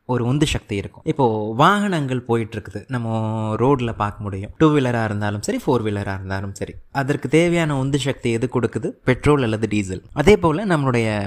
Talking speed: 115 wpm